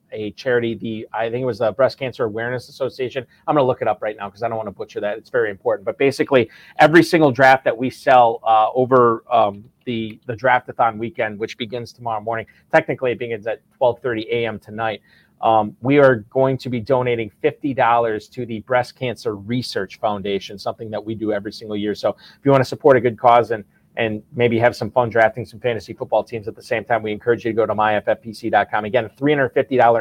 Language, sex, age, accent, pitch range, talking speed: English, male, 30-49, American, 115-130 Hz, 220 wpm